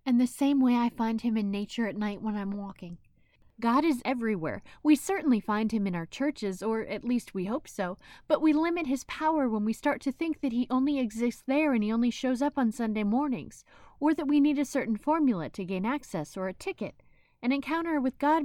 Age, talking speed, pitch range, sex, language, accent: 20-39, 230 wpm, 215-285 Hz, female, English, American